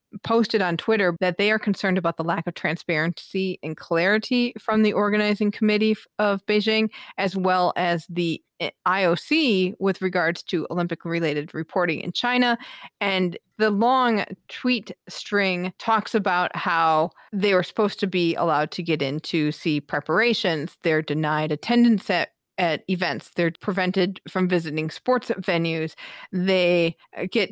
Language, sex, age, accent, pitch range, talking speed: English, female, 30-49, American, 170-205 Hz, 145 wpm